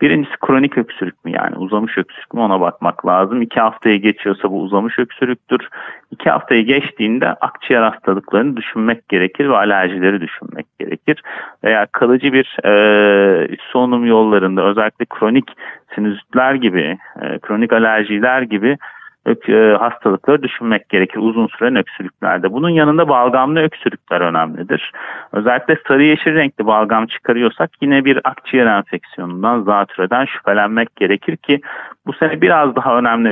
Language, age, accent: Turkish, 40-59, native